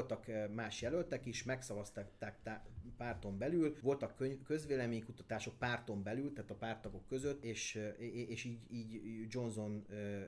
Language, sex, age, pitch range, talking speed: Hungarian, male, 30-49, 110-130 Hz, 125 wpm